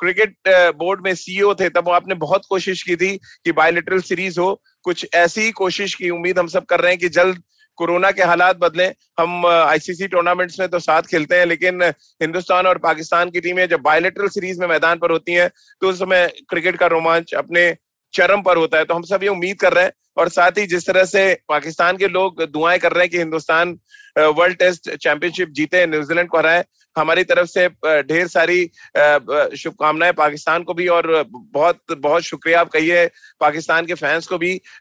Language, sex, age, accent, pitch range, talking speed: Hindi, male, 30-49, native, 165-185 Hz, 200 wpm